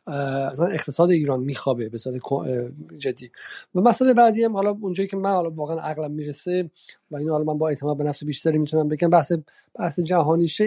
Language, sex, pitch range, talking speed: Persian, male, 135-170 Hz, 180 wpm